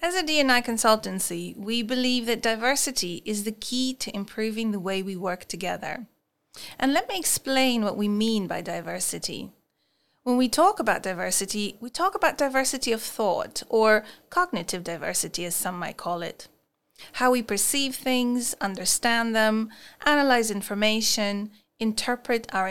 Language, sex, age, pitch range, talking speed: English, female, 30-49, 190-255 Hz, 150 wpm